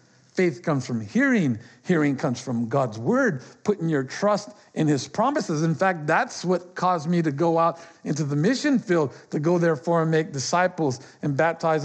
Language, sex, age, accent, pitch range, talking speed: English, male, 50-69, American, 155-220 Hz, 185 wpm